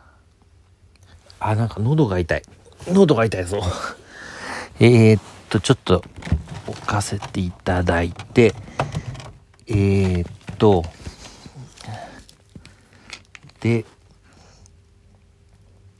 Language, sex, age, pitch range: Japanese, male, 50-69, 85-110 Hz